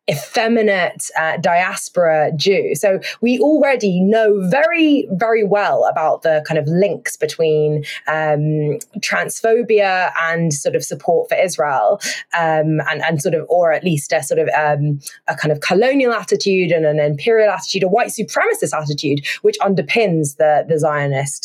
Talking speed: 155 wpm